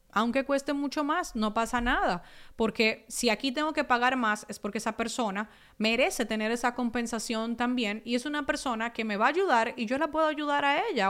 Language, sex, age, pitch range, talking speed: Spanish, female, 30-49, 220-280 Hz, 210 wpm